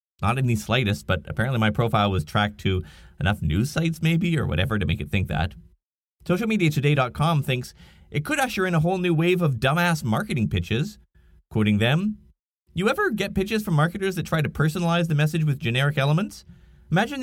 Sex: male